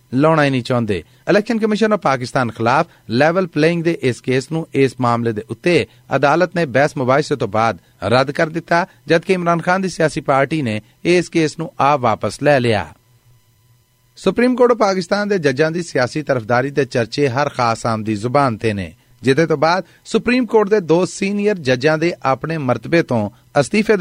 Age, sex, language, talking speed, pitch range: 40-59, male, Punjabi, 185 wpm, 125-170 Hz